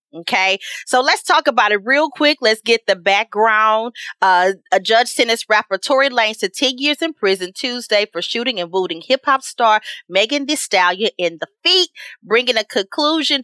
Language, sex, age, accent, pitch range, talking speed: English, female, 30-49, American, 185-260 Hz, 180 wpm